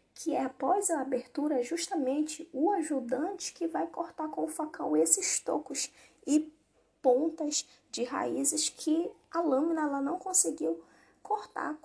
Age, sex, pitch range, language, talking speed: 10-29, female, 245-310 Hz, German, 135 wpm